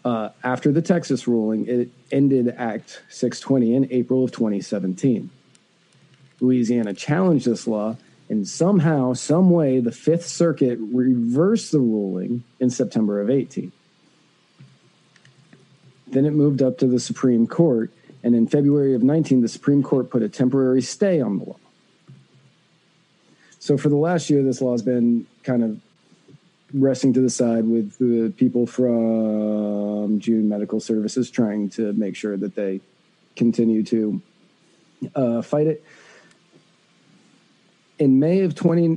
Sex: male